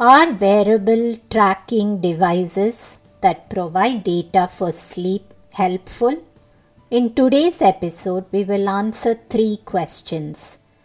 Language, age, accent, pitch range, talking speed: English, 50-69, Indian, 185-245 Hz, 100 wpm